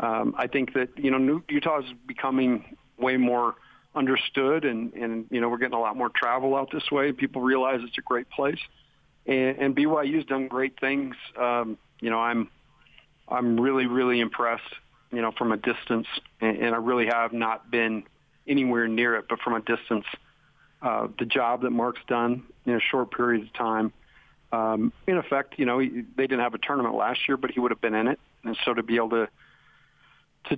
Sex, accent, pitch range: male, American, 120-135 Hz